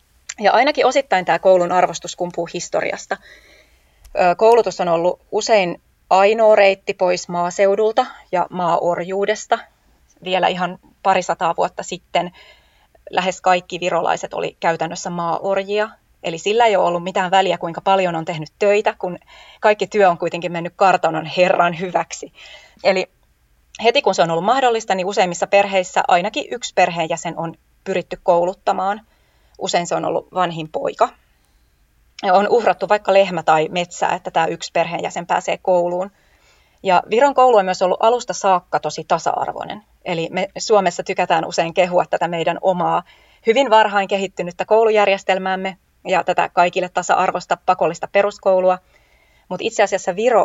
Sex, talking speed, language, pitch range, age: female, 140 wpm, Finnish, 175-195 Hz, 30-49